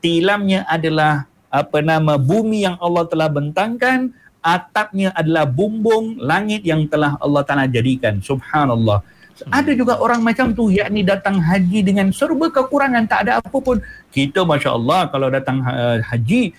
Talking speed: 150 wpm